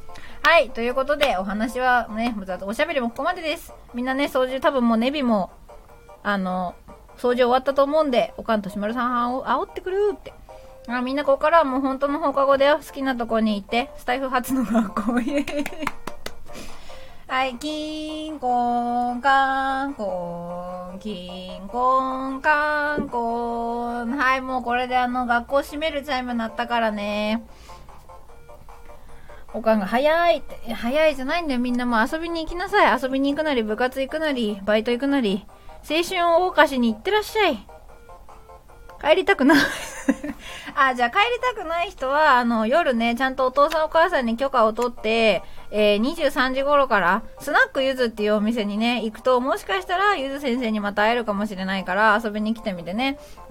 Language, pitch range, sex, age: Japanese, 225-290 Hz, female, 20-39